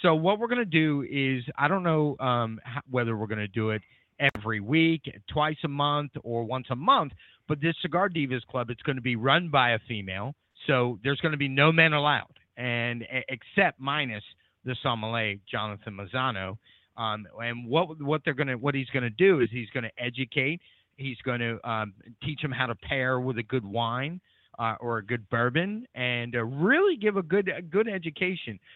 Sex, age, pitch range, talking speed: male, 30-49, 115-155 Hz, 205 wpm